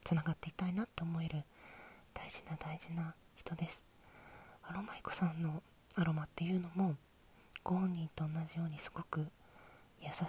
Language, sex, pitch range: Japanese, female, 155-185 Hz